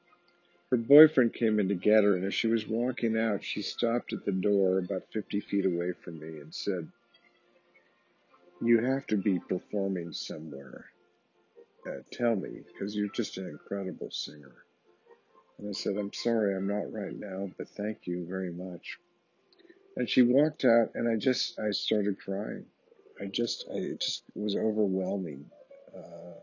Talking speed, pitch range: 160 wpm, 100-115 Hz